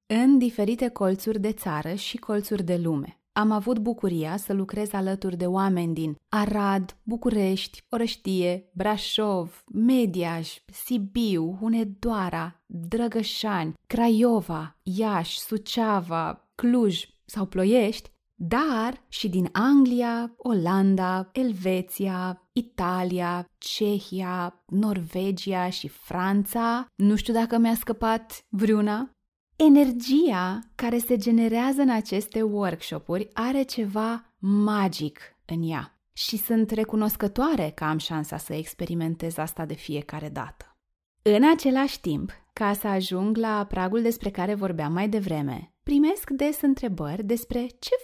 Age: 20-39